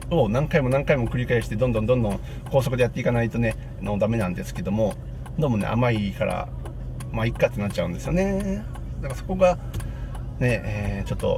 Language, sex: Japanese, male